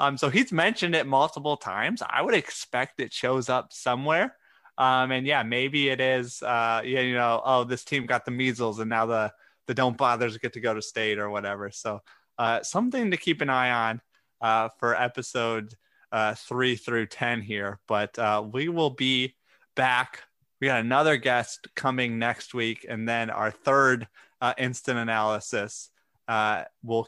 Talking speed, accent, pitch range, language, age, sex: 180 wpm, American, 115-135 Hz, English, 20-39, male